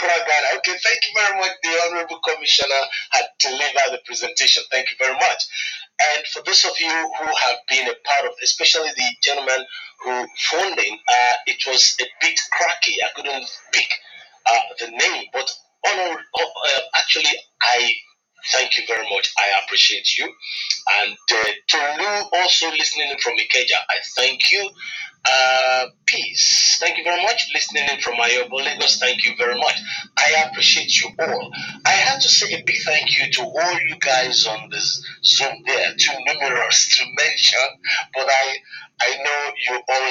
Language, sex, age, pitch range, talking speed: English, male, 30-49, 135-205 Hz, 165 wpm